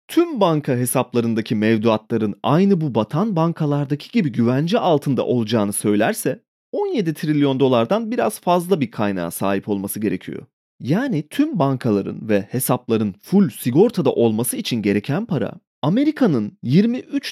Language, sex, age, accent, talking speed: Turkish, male, 30-49, native, 125 wpm